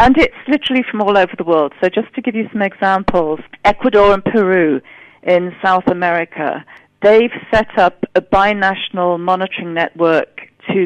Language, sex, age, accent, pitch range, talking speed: English, female, 40-59, British, 180-210 Hz, 160 wpm